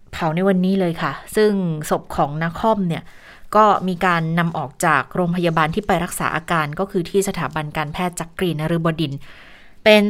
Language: Thai